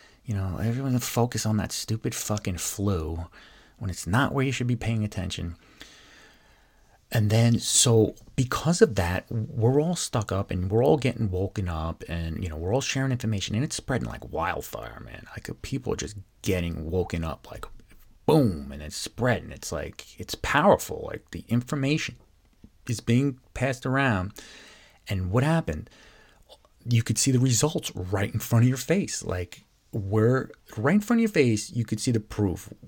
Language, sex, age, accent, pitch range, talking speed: English, male, 30-49, American, 90-120 Hz, 180 wpm